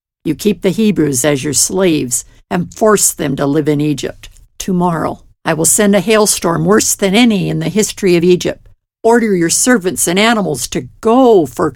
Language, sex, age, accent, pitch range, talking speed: English, female, 60-79, American, 165-245 Hz, 185 wpm